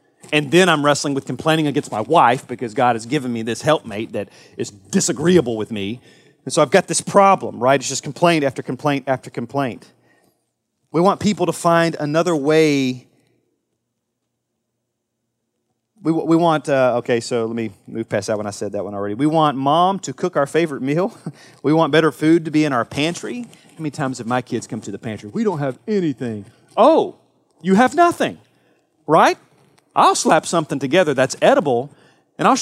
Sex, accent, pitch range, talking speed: male, American, 125-190 Hz, 190 wpm